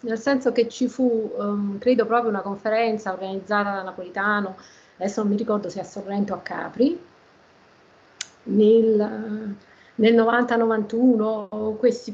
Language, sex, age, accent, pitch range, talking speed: Italian, female, 30-49, native, 195-245 Hz, 140 wpm